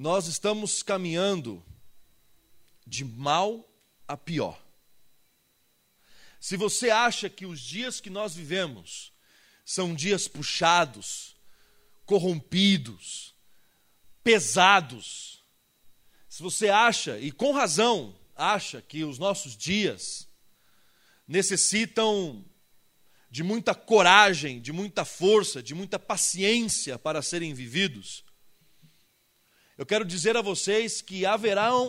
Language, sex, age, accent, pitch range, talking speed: Portuguese, male, 40-59, Brazilian, 160-220 Hz, 100 wpm